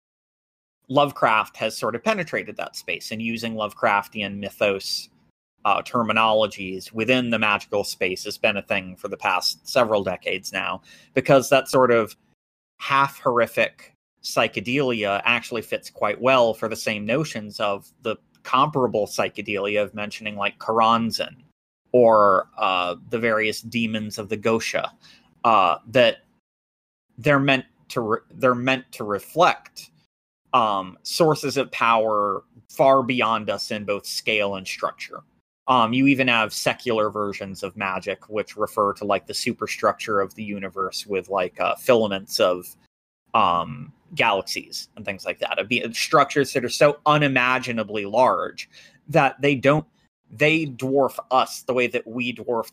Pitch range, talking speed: 105-130 Hz, 145 wpm